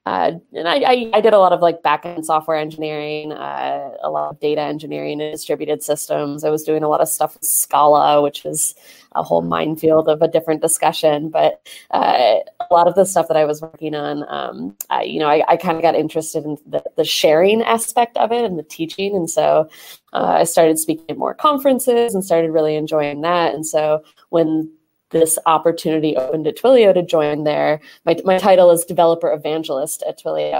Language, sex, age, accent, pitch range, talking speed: English, female, 20-39, American, 150-170 Hz, 205 wpm